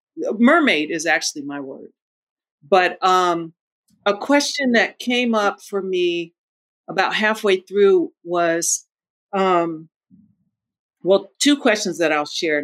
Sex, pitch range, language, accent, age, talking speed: female, 170-225 Hz, English, American, 50-69, 120 wpm